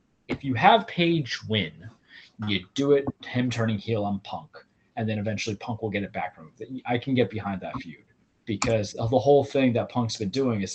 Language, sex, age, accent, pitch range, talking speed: English, male, 20-39, American, 100-125 Hz, 210 wpm